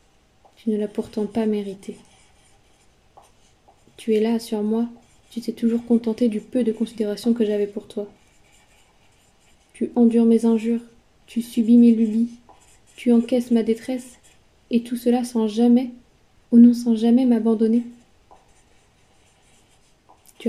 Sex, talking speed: female, 135 wpm